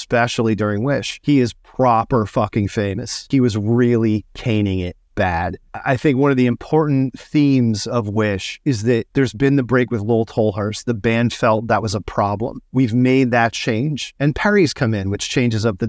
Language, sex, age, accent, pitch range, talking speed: English, male, 30-49, American, 110-125 Hz, 195 wpm